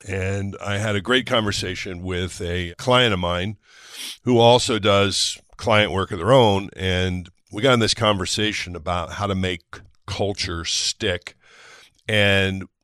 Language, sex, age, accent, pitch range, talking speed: English, male, 50-69, American, 90-105 Hz, 150 wpm